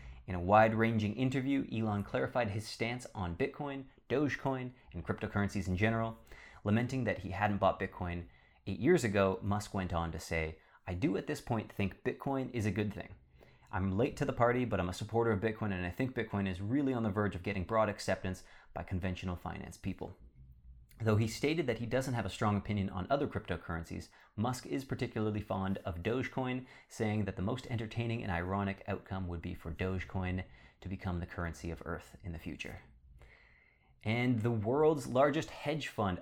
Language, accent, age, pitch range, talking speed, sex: English, American, 30-49, 95-115 Hz, 190 wpm, male